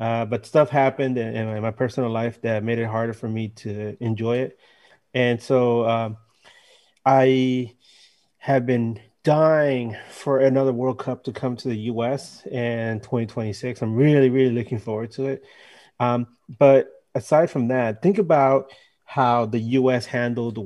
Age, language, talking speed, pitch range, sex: 30-49, English, 165 wpm, 115-135 Hz, male